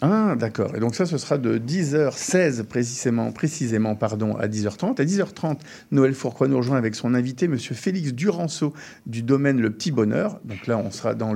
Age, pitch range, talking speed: 50-69, 115-165 Hz, 185 wpm